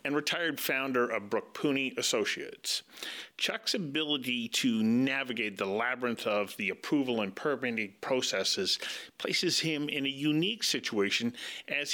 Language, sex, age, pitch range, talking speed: English, male, 40-59, 120-160 Hz, 130 wpm